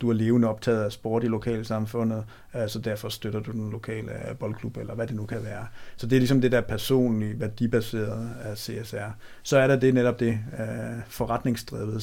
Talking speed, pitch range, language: 190 wpm, 110-120 Hz, Danish